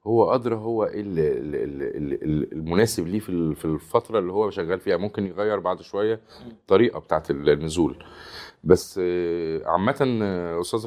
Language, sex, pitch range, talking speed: Arabic, male, 85-115 Hz, 115 wpm